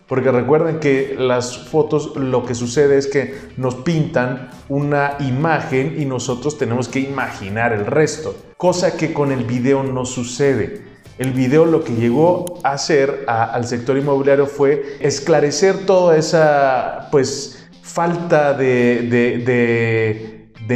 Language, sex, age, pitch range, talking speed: Spanish, male, 30-49, 125-155 Hz, 140 wpm